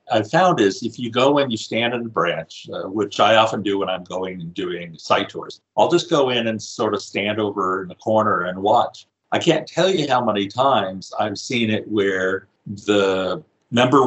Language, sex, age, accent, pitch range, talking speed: English, male, 50-69, American, 105-140 Hz, 220 wpm